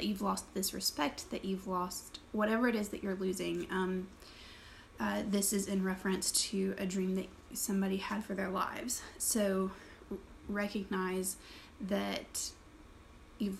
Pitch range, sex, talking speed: 190-225 Hz, female, 140 wpm